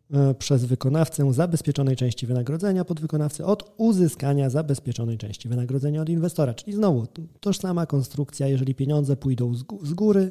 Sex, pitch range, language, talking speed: male, 125-155 Hz, Polish, 135 wpm